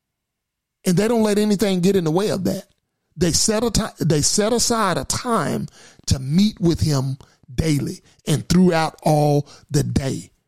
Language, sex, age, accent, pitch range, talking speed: English, male, 40-59, American, 150-195 Hz, 170 wpm